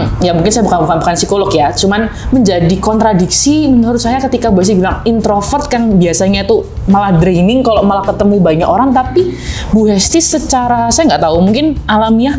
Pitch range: 180-230 Hz